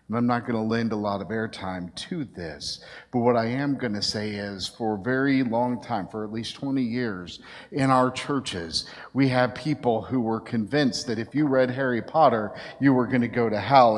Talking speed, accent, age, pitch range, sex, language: 225 wpm, American, 50-69, 115-145 Hz, male, English